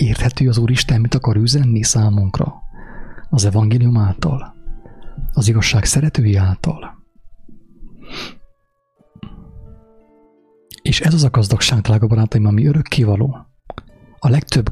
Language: English